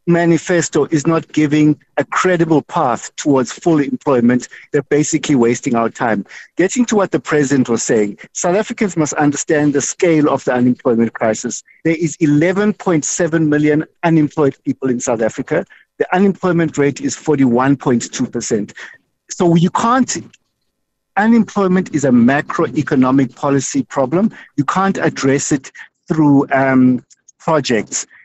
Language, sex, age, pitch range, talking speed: English, male, 50-69, 135-180 Hz, 130 wpm